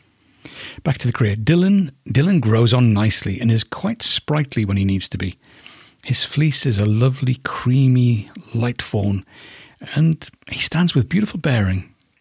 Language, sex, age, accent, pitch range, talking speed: English, male, 40-59, British, 105-135 Hz, 155 wpm